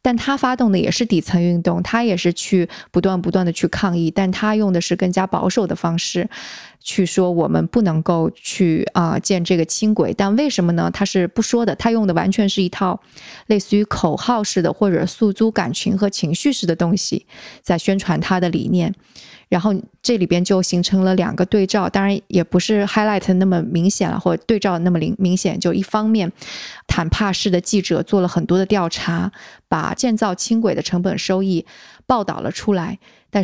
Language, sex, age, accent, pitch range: Chinese, female, 20-39, native, 175-205 Hz